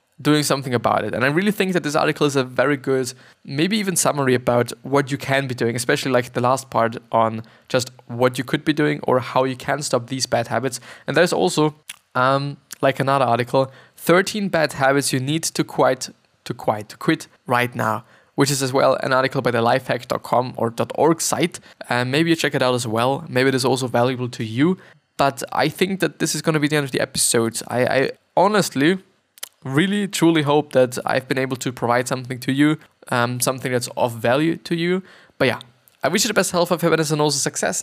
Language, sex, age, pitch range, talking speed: English, male, 20-39, 125-155 Hz, 225 wpm